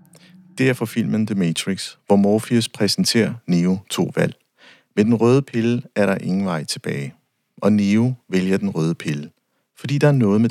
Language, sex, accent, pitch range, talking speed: Danish, male, native, 95-125 Hz, 185 wpm